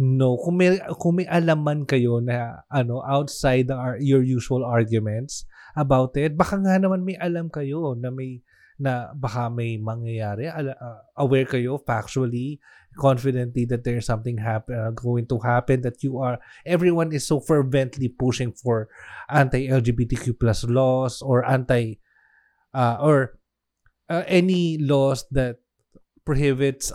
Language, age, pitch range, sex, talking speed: Filipino, 20-39, 120-165 Hz, male, 135 wpm